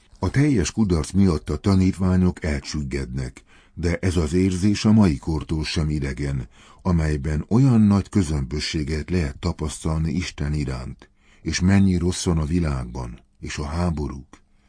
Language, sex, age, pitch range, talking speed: Hungarian, male, 60-79, 75-95 Hz, 130 wpm